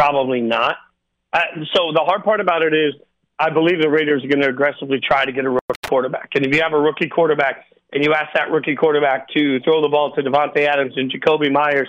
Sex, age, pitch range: male, 40-59, 140-160 Hz